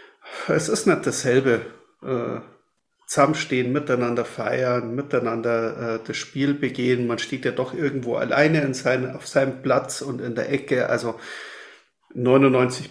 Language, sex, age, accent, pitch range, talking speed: German, male, 40-59, German, 120-145 Hz, 140 wpm